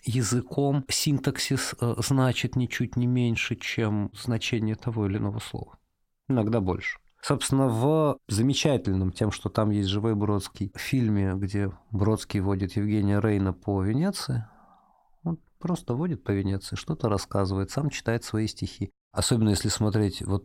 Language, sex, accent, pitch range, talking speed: Russian, male, native, 100-125 Hz, 135 wpm